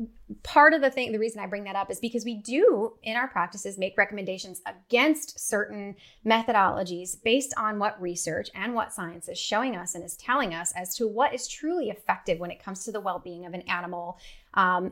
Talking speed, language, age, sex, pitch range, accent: 210 wpm, English, 30-49, female, 180-235 Hz, American